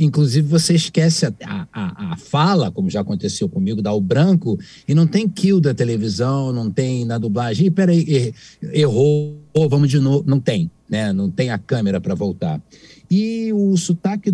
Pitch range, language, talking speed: 110-180 Hz, Portuguese, 180 wpm